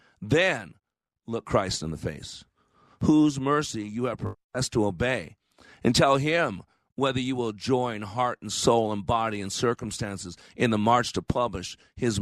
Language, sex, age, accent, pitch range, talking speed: English, male, 50-69, American, 120-165 Hz, 160 wpm